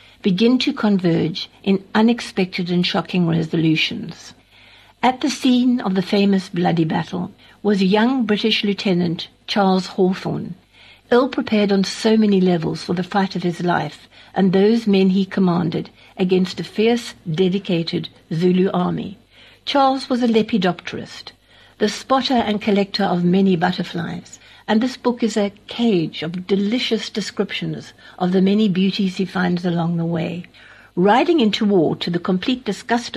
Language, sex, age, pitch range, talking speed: English, female, 60-79, 180-215 Hz, 145 wpm